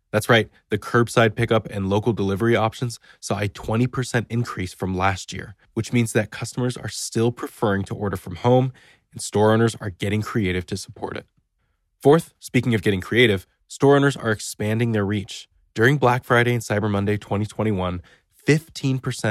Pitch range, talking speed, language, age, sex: 95-120 Hz, 170 wpm, English, 20-39, male